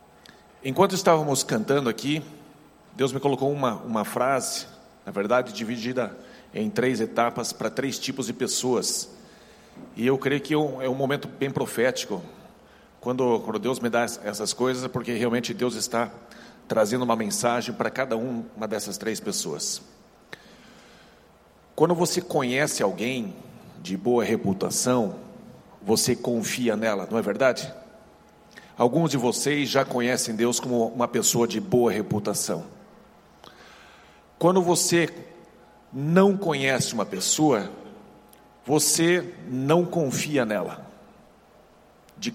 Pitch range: 120-155 Hz